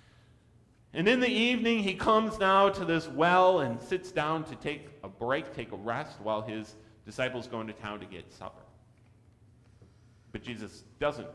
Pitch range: 115-185 Hz